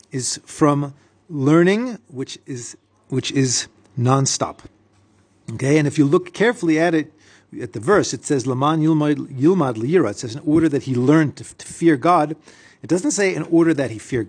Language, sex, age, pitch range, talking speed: English, male, 40-59, 120-160 Hz, 175 wpm